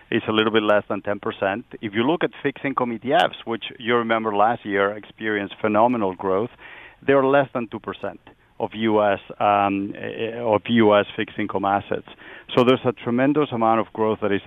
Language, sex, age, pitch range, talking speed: English, male, 40-59, 100-115 Hz, 180 wpm